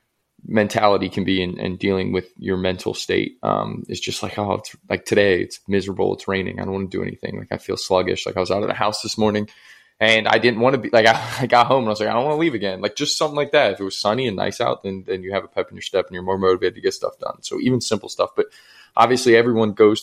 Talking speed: 295 wpm